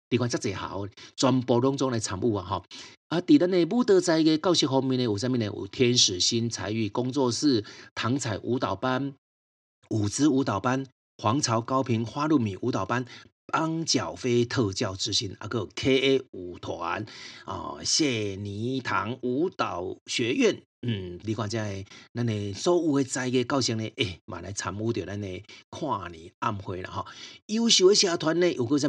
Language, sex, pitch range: Chinese, male, 105-135 Hz